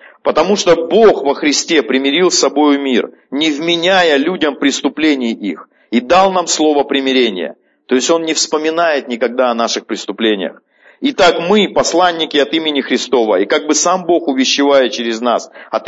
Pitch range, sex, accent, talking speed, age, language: 130-175 Hz, male, native, 165 wpm, 40-59, Russian